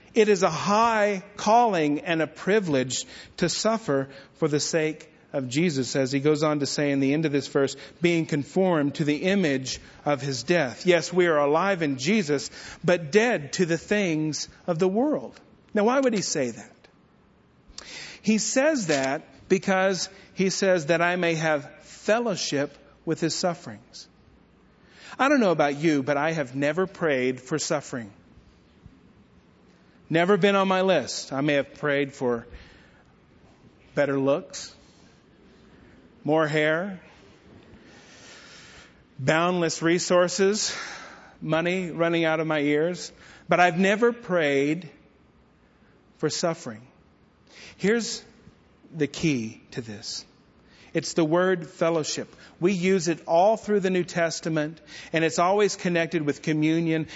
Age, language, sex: 40-59, English, male